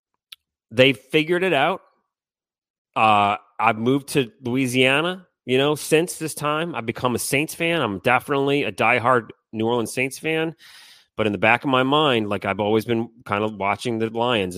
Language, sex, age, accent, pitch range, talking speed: English, male, 30-49, American, 105-140 Hz, 175 wpm